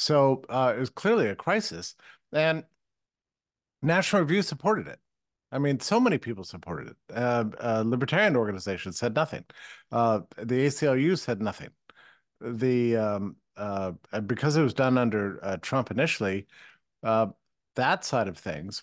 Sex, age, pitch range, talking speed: male, 50-69, 110-145 Hz, 145 wpm